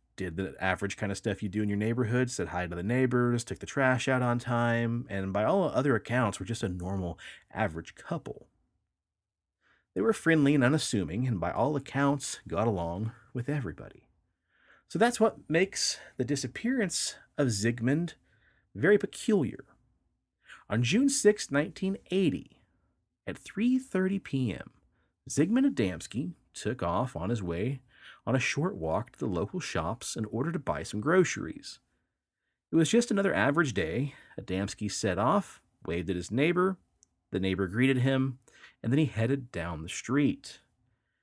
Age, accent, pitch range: 30-49, American, 100-150 Hz